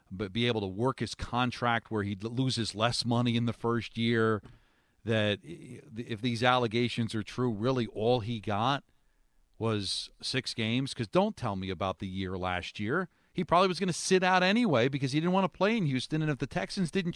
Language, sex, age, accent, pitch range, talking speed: English, male, 40-59, American, 100-130 Hz, 205 wpm